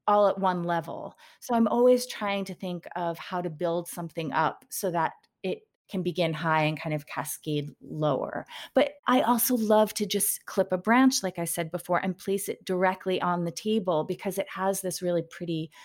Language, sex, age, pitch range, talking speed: English, female, 30-49, 165-220 Hz, 200 wpm